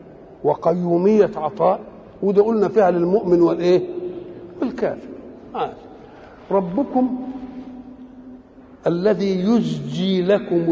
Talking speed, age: 75 wpm, 60-79